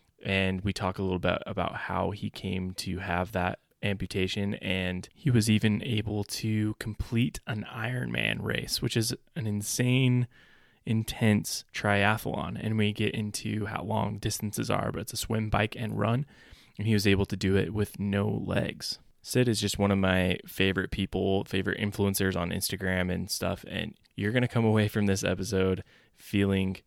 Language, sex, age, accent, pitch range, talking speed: English, male, 20-39, American, 95-105 Hz, 175 wpm